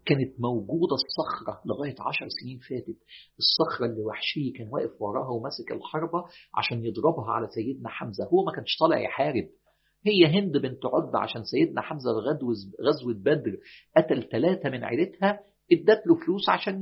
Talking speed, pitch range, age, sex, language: 155 wpm, 105-180 Hz, 50-69, male, Arabic